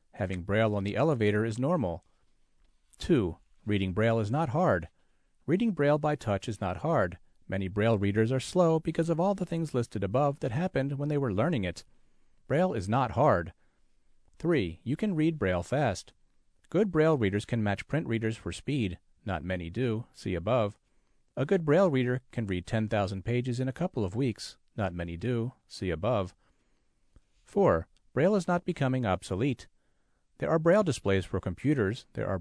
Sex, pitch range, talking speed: male, 100-150 Hz, 175 wpm